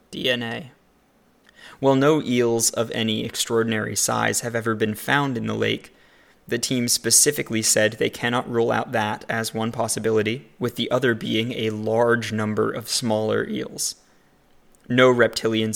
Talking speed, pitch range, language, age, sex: 150 wpm, 110-120 Hz, English, 20-39, male